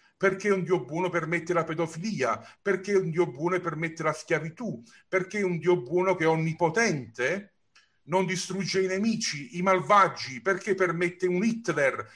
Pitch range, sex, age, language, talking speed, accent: 155-190 Hz, male, 40-59, Italian, 155 wpm, native